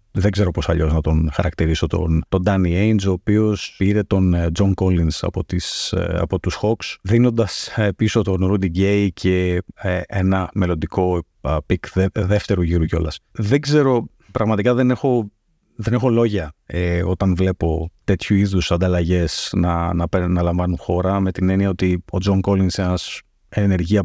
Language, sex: Greek, male